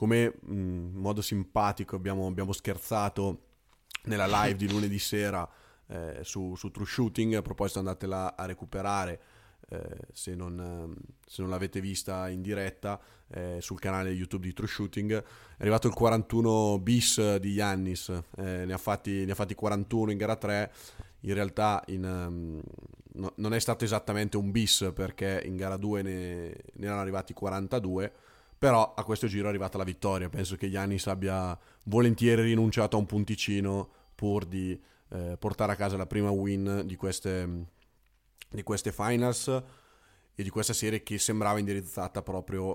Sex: male